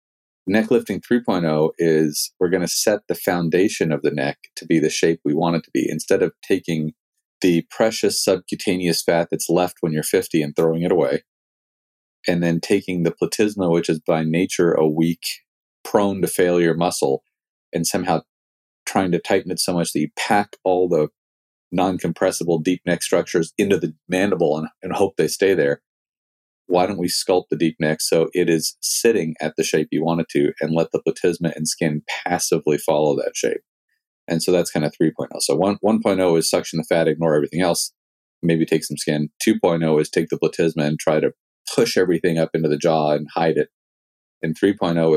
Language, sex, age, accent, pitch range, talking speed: English, male, 40-59, American, 80-90 Hz, 195 wpm